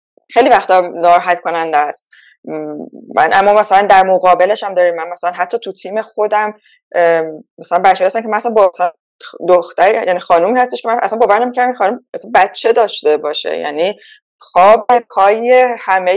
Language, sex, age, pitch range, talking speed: Persian, female, 20-39, 180-230 Hz, 150 wpm